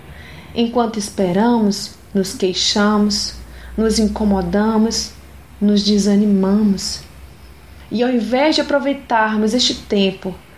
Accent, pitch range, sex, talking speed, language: Brazilian, 185-230 Hz, female, 85 wpm, Portuguese